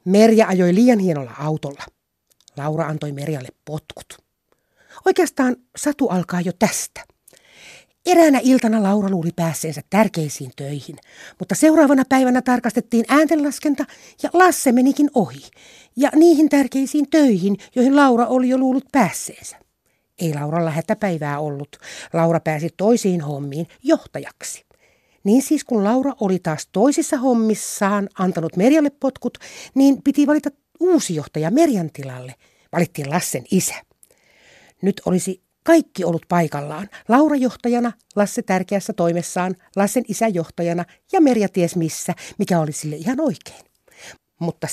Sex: female